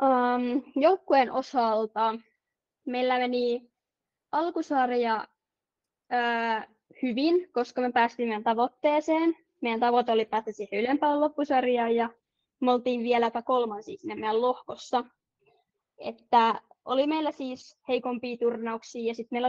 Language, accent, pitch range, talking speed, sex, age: Finnish, native, 225-260 Hz, 110 wpm, female, 20-39